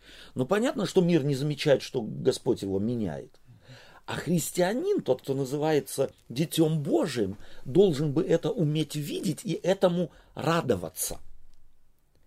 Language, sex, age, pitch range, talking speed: Russian, male, 40-59, 95-145 Hz, 120 wpm